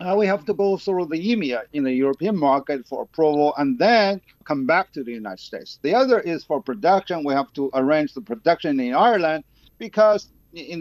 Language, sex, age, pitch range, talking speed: English, male, 50-69, 145-185 Hz, 205 wpm